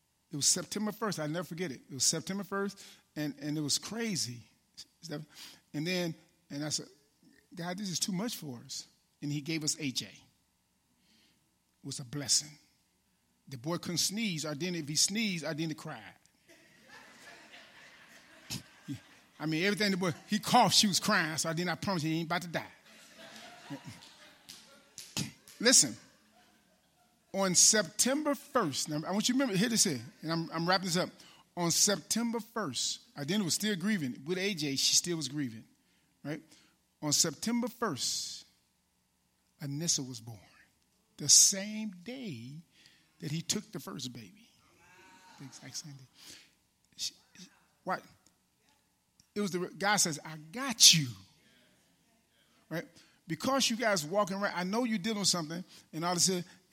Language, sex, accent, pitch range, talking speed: English, male, American, 150-205 Hz, 155 wpm